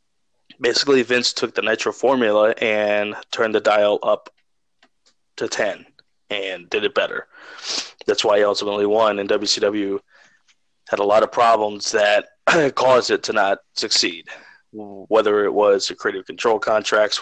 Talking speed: 145 wpm